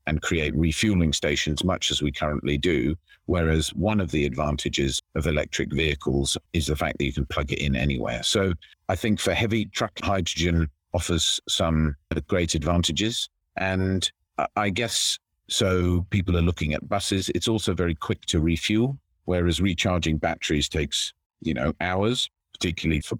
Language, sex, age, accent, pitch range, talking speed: English, male, 50-69, British, 80-95 Hz, 160 wpm